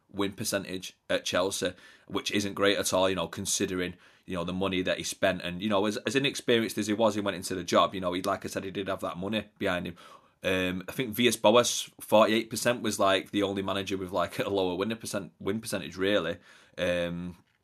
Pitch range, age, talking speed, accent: 95-115 Hz, 30-49, 230 wpm, British